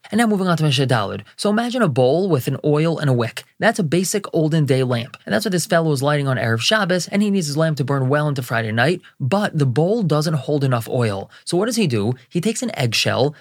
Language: English